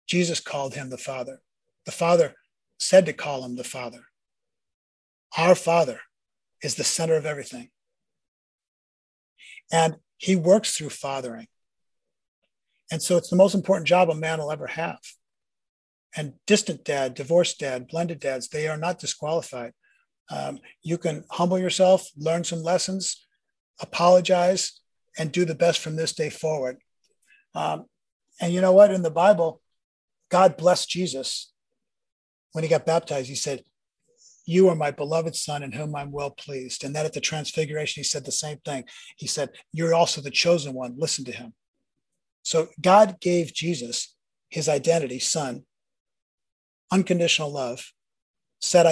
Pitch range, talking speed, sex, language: 140-180 Hz, 150 wpm, male, English